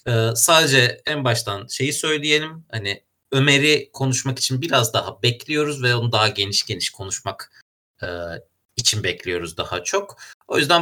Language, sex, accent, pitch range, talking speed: Turkish, male, native, 110-145 Hz, 145 wpm